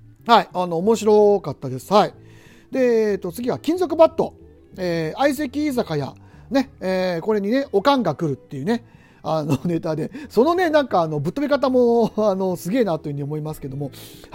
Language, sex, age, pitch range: Japanese, male, 40-59, 180-270 Hz